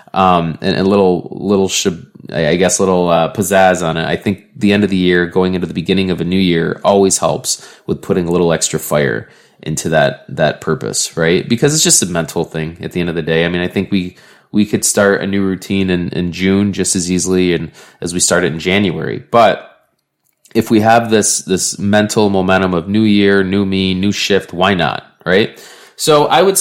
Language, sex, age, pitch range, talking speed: English, male, 20-39, 90-115 Hz, 220 wpm